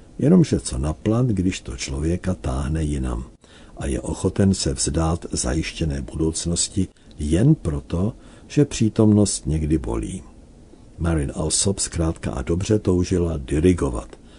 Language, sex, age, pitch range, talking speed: Czech, male, 60-79, 75-100 Hz, 115 wpm